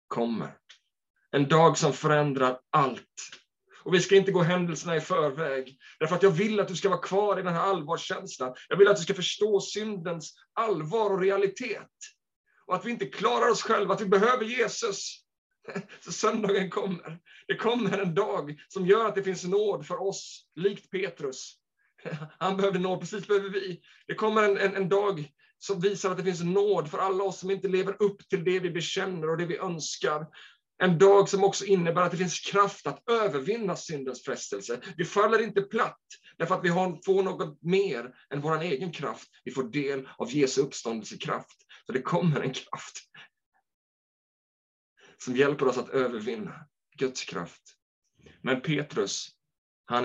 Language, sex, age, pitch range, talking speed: Swedish, male, 30-49, 155-200 Hz, 175 wpm